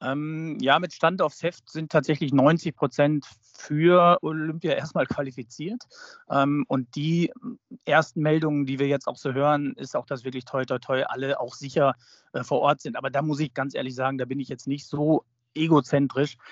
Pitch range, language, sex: 130-155 Hz, German, male